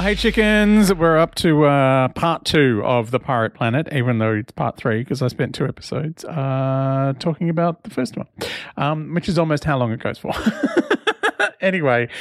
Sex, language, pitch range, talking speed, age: male, English, 115-165 Hz, 185 wpm, 40-59